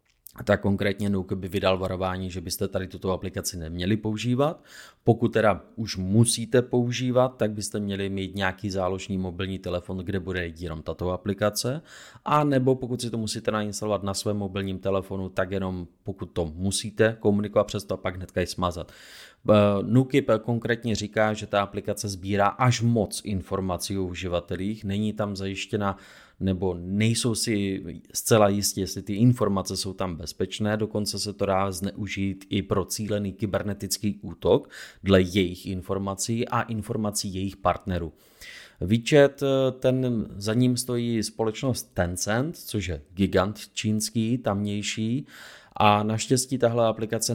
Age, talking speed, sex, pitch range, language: 20-39, 145 wpm, male, 95-110 Hz, Czech